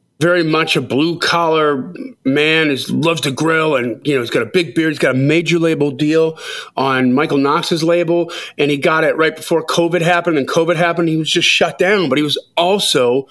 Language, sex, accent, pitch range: English, male, American, 140-180 Hz